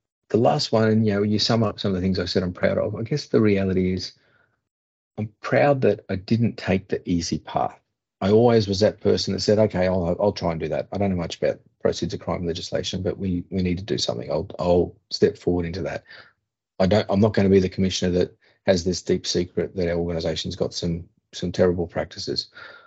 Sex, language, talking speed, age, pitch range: male, English, 235 wpm, 40-59, 90-105 Hz